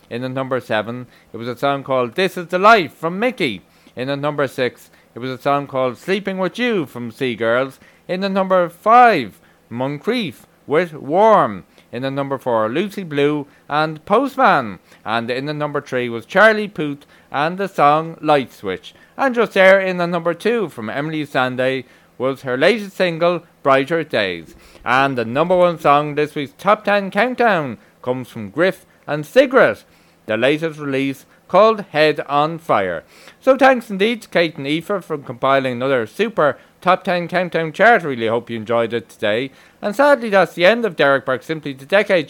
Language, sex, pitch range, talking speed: English, male, 130-190 Hz, 180 wpm